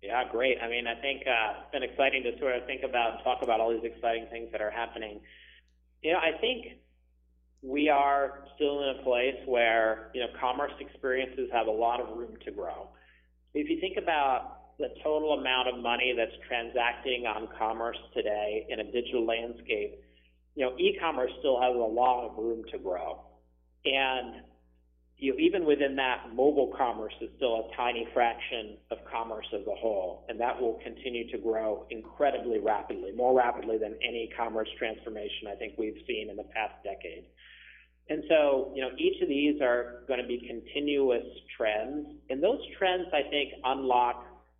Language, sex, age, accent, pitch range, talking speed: English, male, 40-59, American, 110-140 Hz, 180 wpm